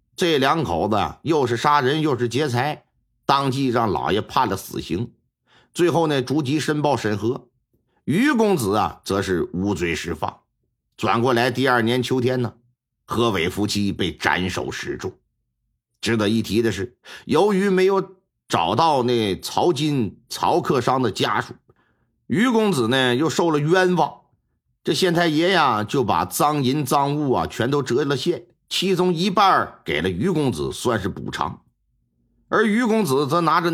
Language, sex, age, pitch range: Chinese, male, 50-69, 120-175 Hz